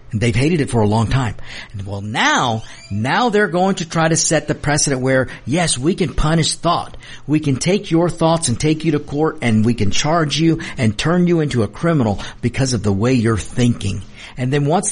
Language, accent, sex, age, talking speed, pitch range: English, American, male, 50-69, 215 wpm, 110-155 Hz